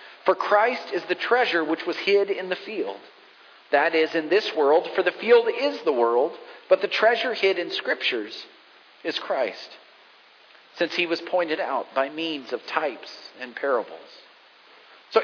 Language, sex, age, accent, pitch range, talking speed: English, male, 40-59, American, 145-195 Hz, 165 wpm